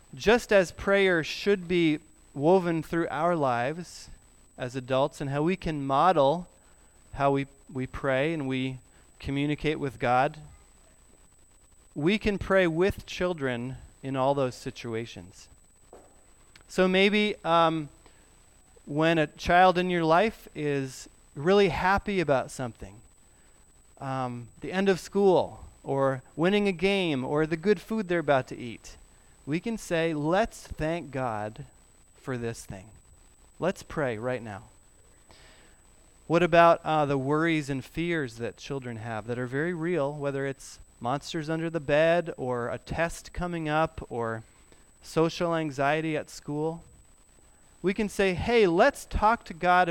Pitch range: 125-175 Hz